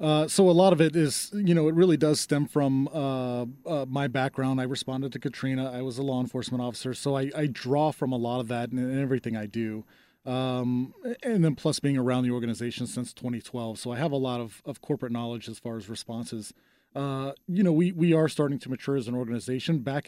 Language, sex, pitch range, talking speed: English, male, 120-145 Hz, 230 wpm